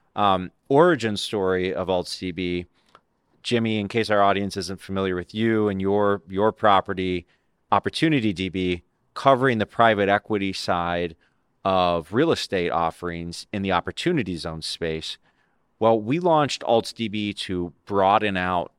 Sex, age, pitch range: male, 30-49, 90-105 Hz